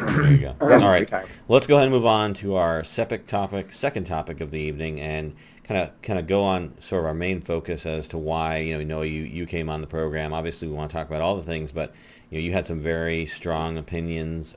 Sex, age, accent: male, 40-59, American